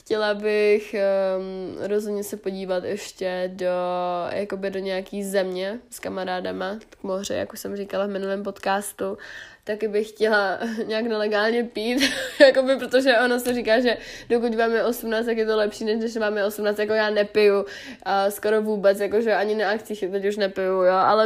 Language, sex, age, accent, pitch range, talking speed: Czech, female, 20-39, native, 195-220 Hz, 180 wpm